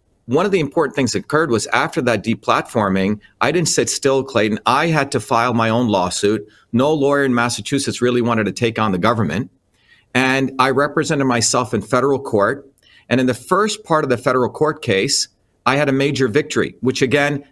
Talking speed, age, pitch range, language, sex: 200 wpm, 50-69, 115-145 Hz, English, male